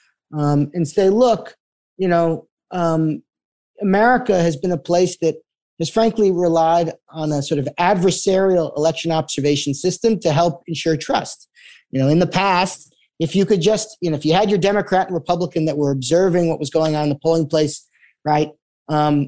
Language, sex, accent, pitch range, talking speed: English, male, American, 165-220 Hz, 185 wpm